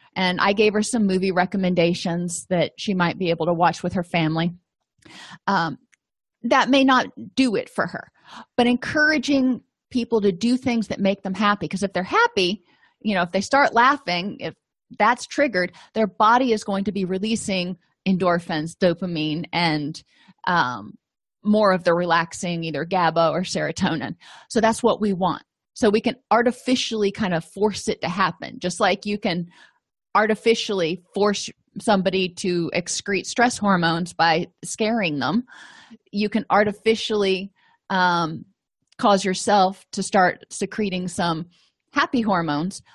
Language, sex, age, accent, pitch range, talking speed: English, female, 30-49, American, 180-225 Hz, 150 wpm